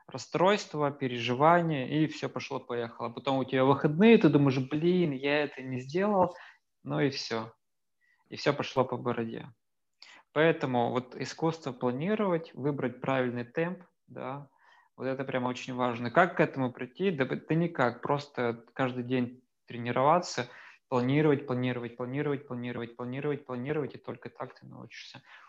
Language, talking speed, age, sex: Russian, 140 wpm, 20-39, male